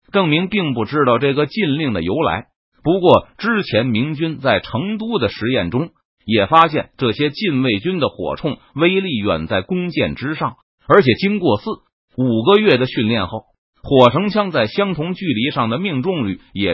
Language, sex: Chinese, male